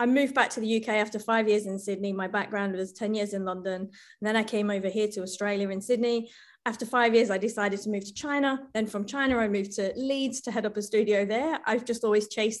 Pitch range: 210-265 Hz